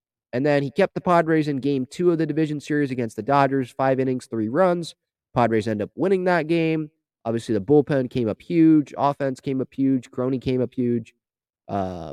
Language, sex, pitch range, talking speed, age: English, male, 115-150 Hz, 205 wpm, 30-49